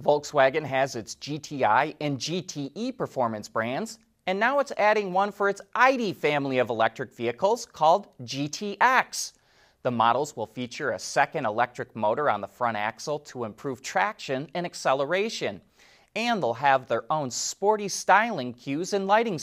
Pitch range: 130-200 Hz